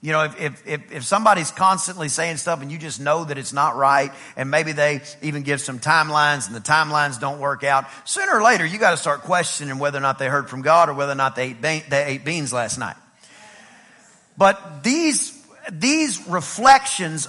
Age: 40-59